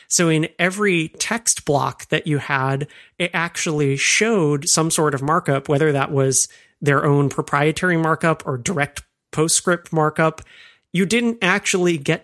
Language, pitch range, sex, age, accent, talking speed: English, 135-165 Hz, male, 30-49, American, 145 wpm